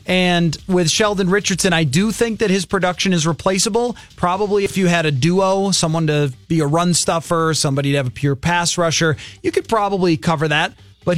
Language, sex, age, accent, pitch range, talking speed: English, male, 30-49, American, 155-200 Hz, 195 wpm